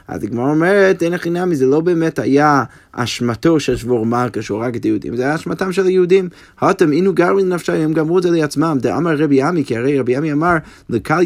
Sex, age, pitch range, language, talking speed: male, 20-39, 115-155 Hz, Hebrew, 215 wpm